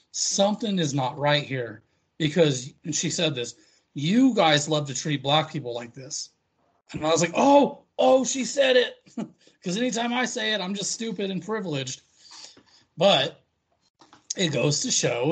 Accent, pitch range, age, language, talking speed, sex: American, 140-180 Hz, 30-49, English, 170 wpm, male